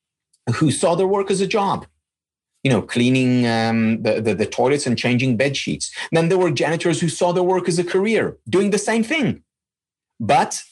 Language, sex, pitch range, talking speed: English, male, 115-180 Hz, 190 wpm